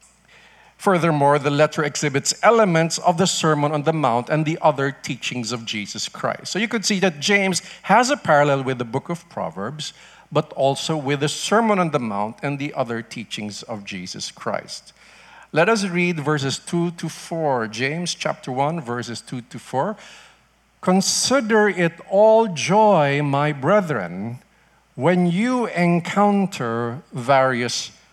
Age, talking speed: 50-69, 150 wpm